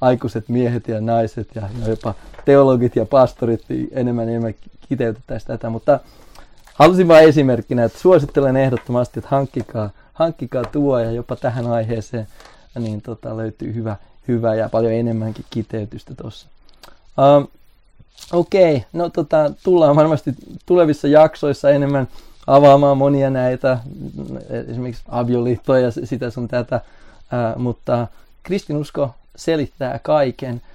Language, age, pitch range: Finnish, 30-49, 110-135 Hz